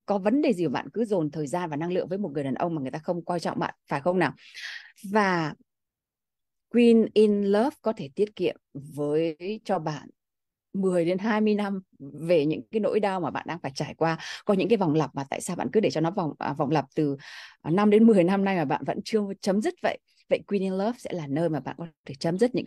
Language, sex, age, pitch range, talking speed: Vietnamese, female, 20-39, 160-210 Hz, 255 wpm